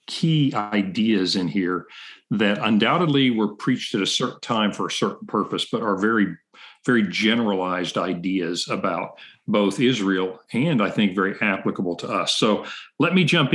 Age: 50-69